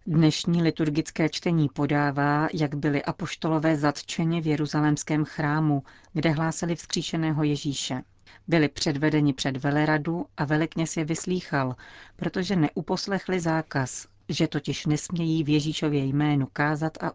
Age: 40-59